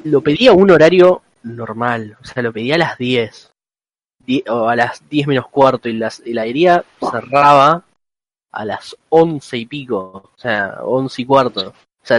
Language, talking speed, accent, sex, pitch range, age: Spanish, 175 wpm, Argentinian, male, 125-155 Hz, 20-39